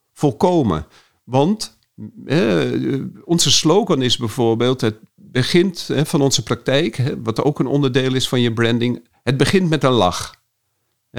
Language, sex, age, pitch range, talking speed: Dutch, male, 50-69, 120-155 Hz, 145 wpm